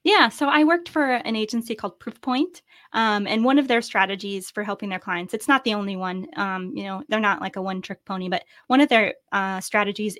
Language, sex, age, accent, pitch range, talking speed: English, female, 20-39, American, 190-225 Hz, 235 wpm